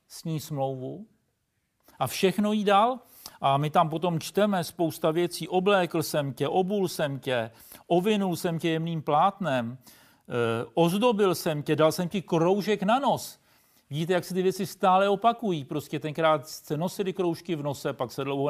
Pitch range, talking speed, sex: 135-190 Hz, 170 wpm, male